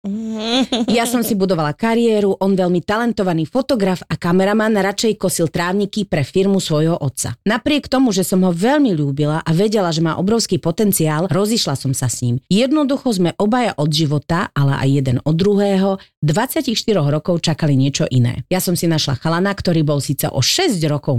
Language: Slovak